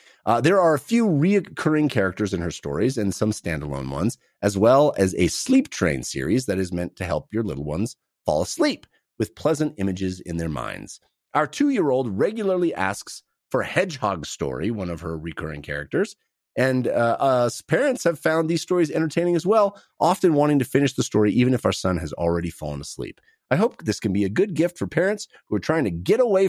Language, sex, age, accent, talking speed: English, male, 30-49, American, 205 wpm